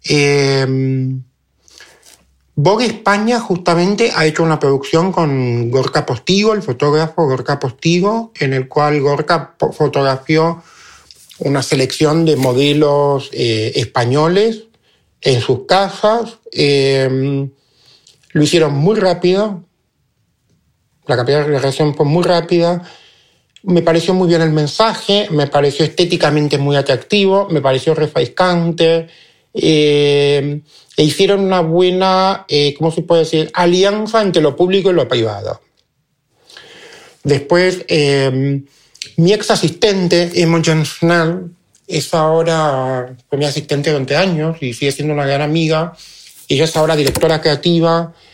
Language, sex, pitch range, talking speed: Spanish, male, 140-175 Hz, 120 wpm